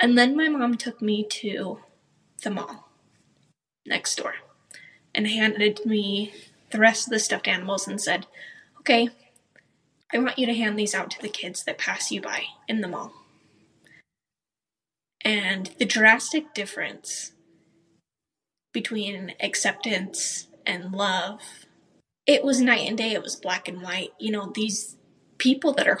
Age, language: 10-29, English